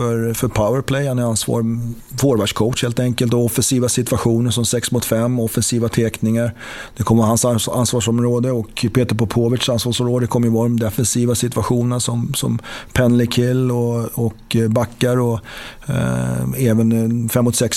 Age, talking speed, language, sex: 30-49, 150 wpm, English, male